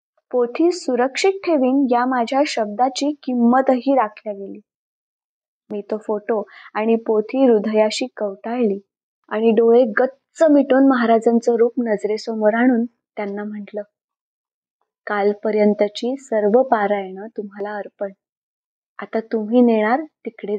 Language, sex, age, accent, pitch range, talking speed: Marathi, female, 20-39, native, 215-275 Hz, 100 wpm